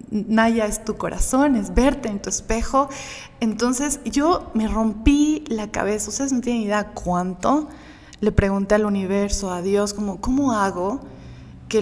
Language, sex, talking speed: Spanish, female, 150 wpm